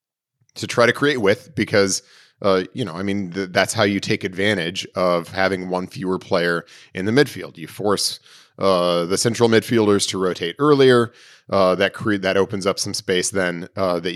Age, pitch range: 30-49, 90-120 Hz